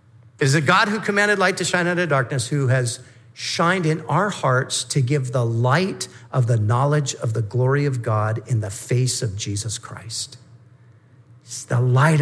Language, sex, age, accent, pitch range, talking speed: English, male, 50-69, American, 120-160 Hz, 185 wpm